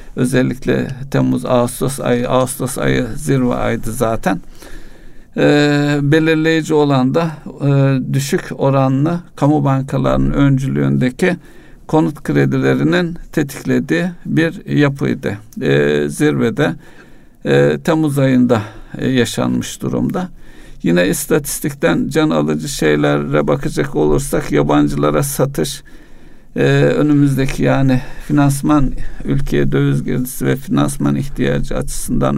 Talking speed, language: 95 wpm, Turkish